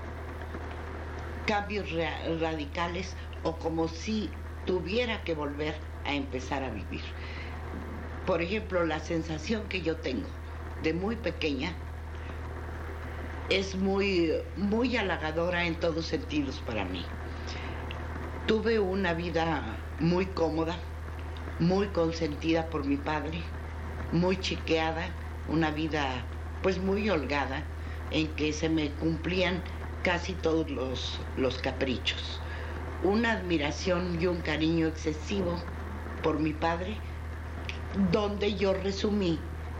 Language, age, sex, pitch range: Spanish, 50-69, female, 80-85 Hz